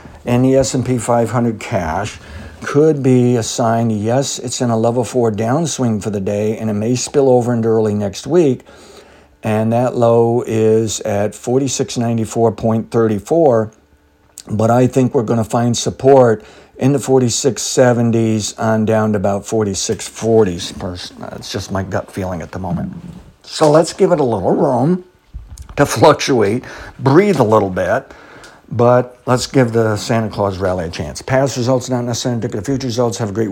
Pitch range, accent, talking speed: 105-125 Hz, American, 165 wpm